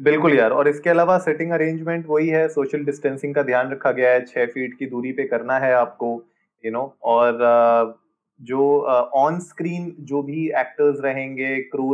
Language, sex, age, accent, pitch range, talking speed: Hindi, male, 20-39, native, 125-155 Hz, 190 wpm